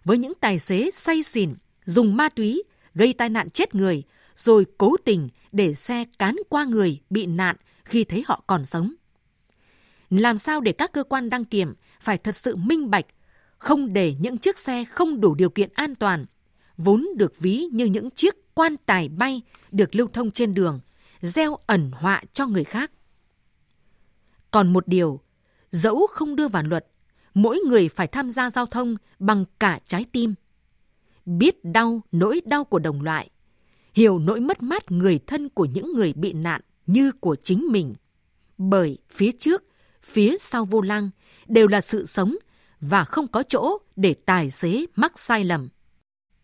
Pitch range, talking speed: 185-245 Hz, 175 wpm